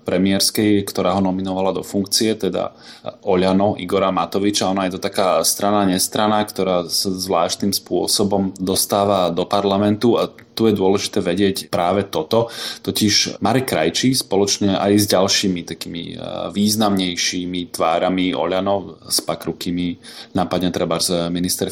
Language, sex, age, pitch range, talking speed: Slovak, male, 20-39, 95-105 Hz, 125 wpm